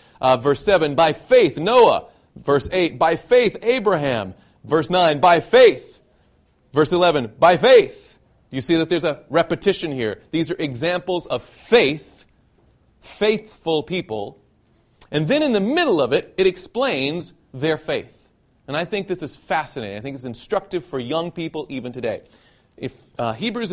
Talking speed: 155 wpm